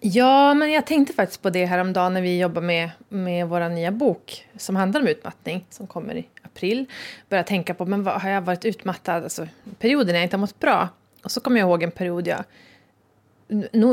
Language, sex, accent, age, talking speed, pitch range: Swedish, female, native, 30-49, 215 wpm, 175-215 Hz